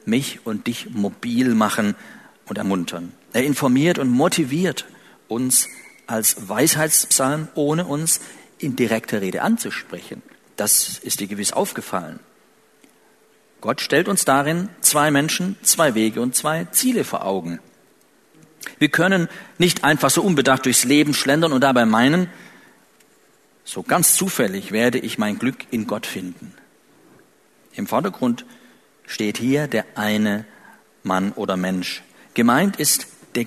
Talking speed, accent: 130 wpm, German